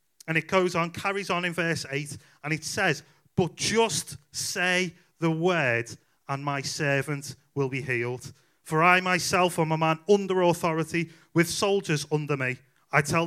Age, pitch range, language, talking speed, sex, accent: 30-49, 145-180 Hz, English, 165 wpm, male, British